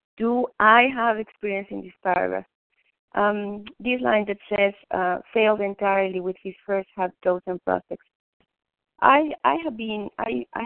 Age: 30-49